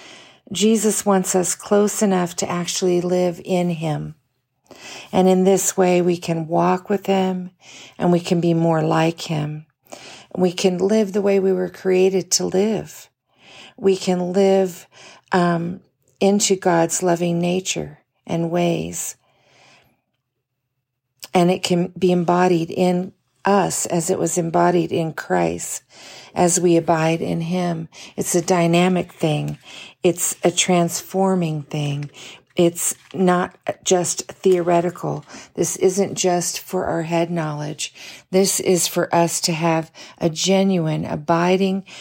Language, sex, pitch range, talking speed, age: English, female, 160-190 Hz, 130 wpm, 50-69